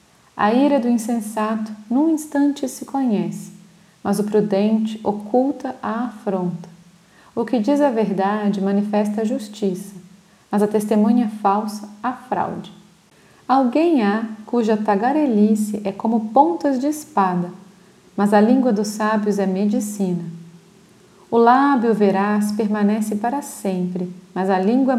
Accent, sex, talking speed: Brazilian, female, 125 wpm